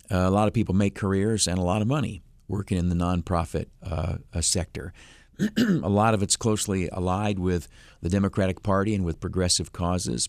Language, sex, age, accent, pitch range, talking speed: English, male, 50-69, American, 90-105 Hz, 180 wpm